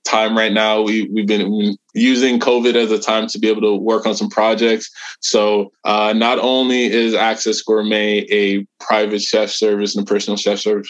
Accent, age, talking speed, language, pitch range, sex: American, 20-39, 195 wpm, English, 100-110 Hz, male